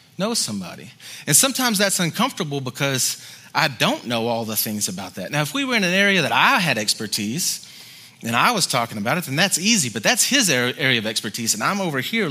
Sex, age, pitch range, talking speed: male, 30-49, 125-175 Hz, 220 wpm